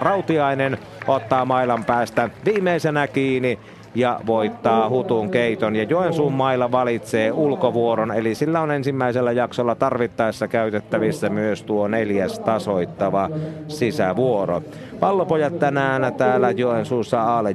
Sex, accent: male, native